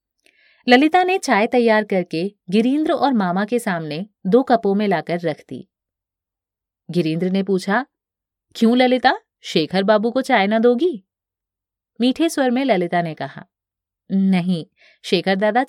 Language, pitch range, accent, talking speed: Hindi, 165-245 Hz, native, 140 wpm